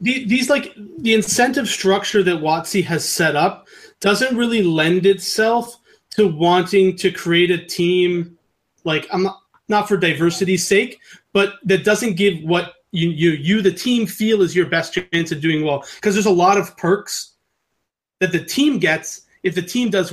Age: 30-49